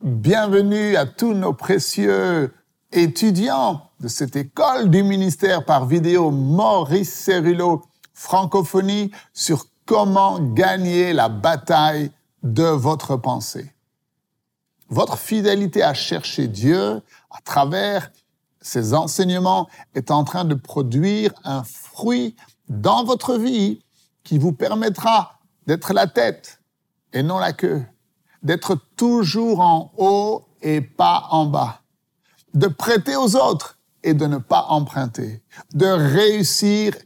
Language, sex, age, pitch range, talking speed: French, male, 50-69, 155-205 Hz, 115 wpm